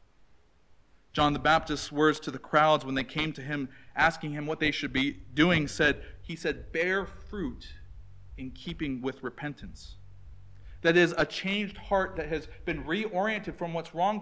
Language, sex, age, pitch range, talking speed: English, male, 40-59, 110-185 Hz, 170 wpm